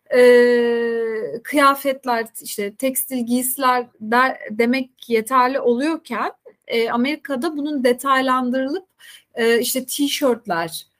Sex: female